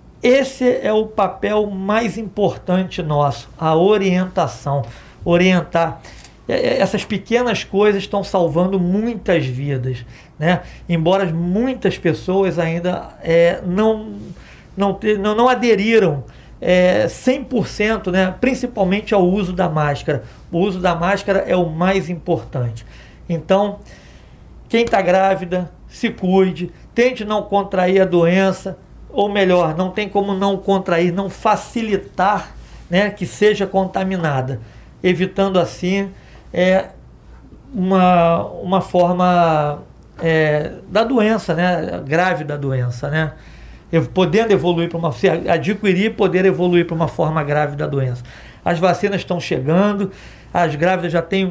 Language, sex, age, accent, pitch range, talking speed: Portuguese, male, 50-69, Brazilian, 170-200 Hz, 120 wpm